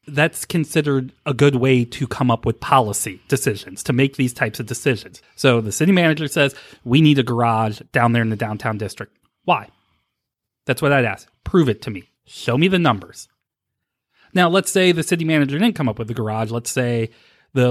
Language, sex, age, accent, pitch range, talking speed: English, male, 30-49, American, 120-150 Hz, 205 wpm